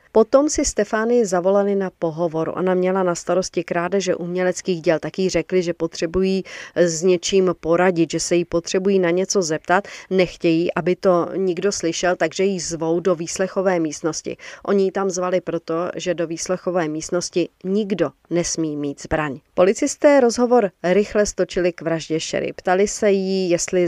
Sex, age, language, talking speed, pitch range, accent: female, 40-59, Czech, 155 wpm, 170-195 Hz, native